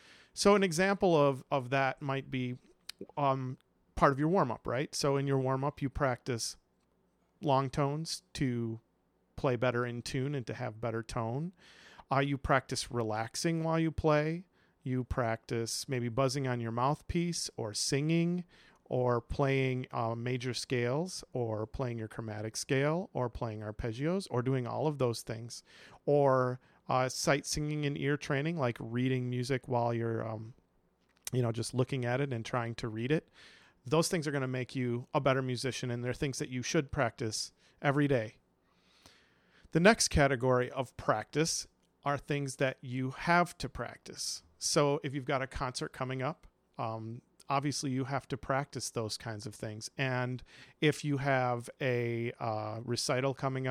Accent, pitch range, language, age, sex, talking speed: American, 120-145 Hz, English, 40-59, male, 165 wpm